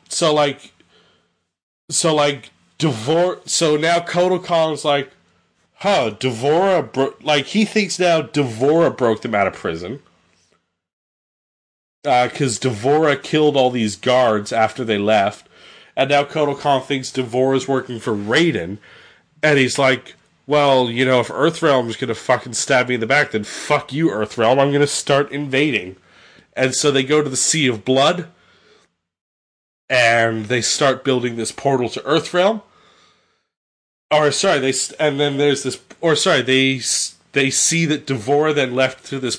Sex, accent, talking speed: male, American, 150 wpm